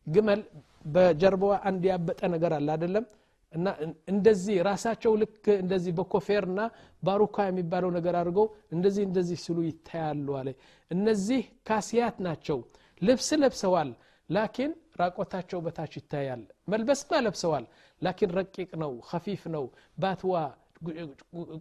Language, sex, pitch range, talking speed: Amharic, male, 155-210 Hz, 115 wpm